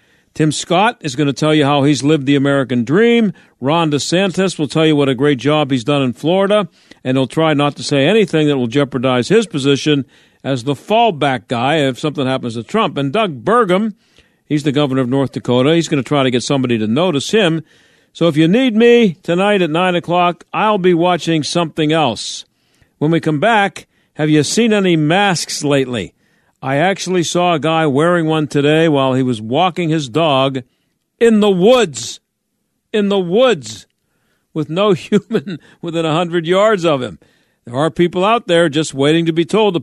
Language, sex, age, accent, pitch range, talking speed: English, male, 50-69, American, 140-175 Hz, 195 wpm